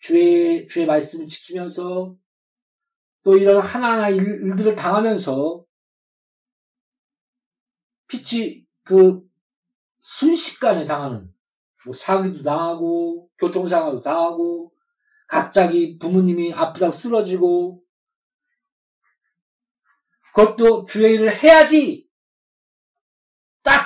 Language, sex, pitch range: Korean, male, 190-280 Hz